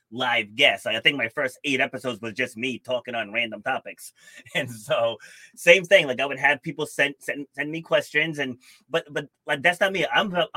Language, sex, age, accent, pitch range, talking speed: English, male, 30-49, American, 125-155 Hz, 220 wpm